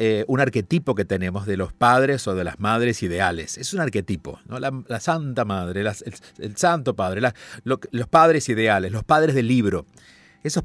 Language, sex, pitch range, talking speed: Spanish, male, 100-135 Hz, 195 wpm